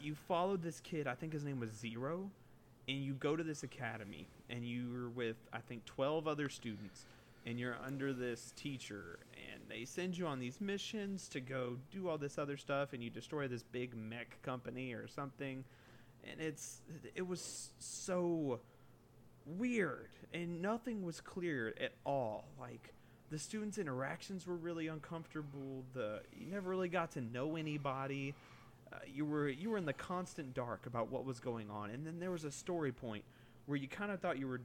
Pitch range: 120-155 Hz